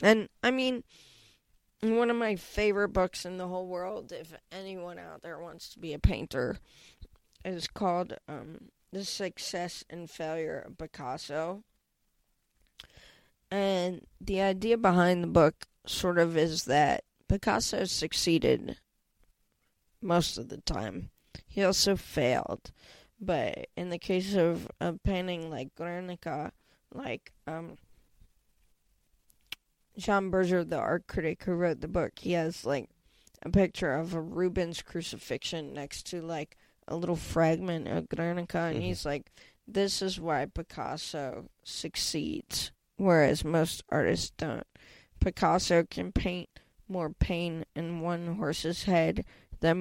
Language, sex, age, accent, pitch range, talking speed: English, female, 20-39, American, 160-185 Hz, 130 wpm